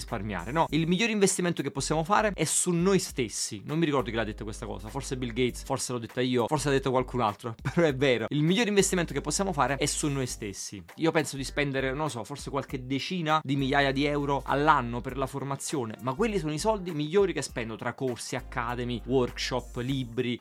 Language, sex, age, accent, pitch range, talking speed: Italian, male, 30-49, native, 125-170 Hz, 220 wpm